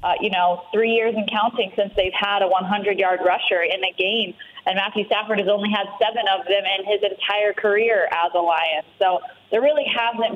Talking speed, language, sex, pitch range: 210 wpm, English, female, 185-215 Hz